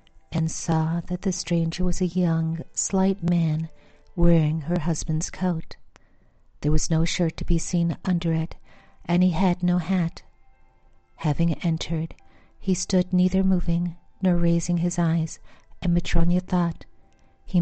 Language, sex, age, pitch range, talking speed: English, female, 50-69, 160-180 Hz, 145 wpm